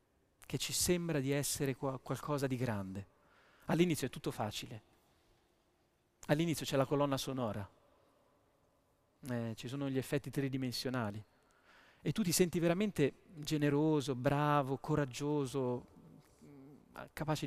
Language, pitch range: Italian, 125-150 Hz